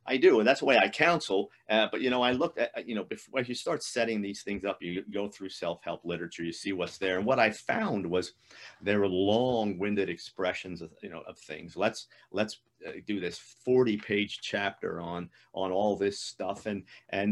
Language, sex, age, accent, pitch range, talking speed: English, male, 50-69, American, 100-120 Hz, 215 wpm